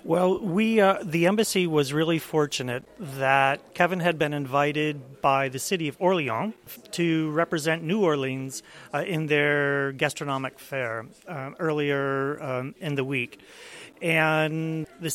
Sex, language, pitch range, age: male, English, 145-180 Hz, 40-59